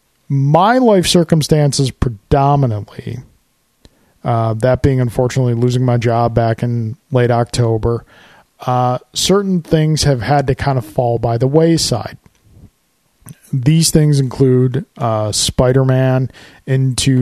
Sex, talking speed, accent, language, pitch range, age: male, 115 wpm, American, English, 125-150 Hz, 40-59